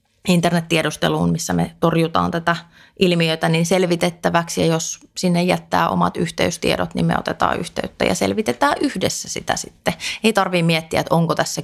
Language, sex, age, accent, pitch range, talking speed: Finnish, female, 30-49, native, 150-175 Hz, 150 wpm